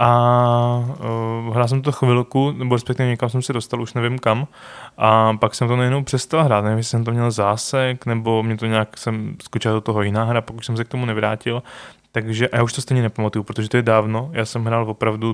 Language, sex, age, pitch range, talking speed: Czech, male, 20-39, 110-125 Hz, 225 wpm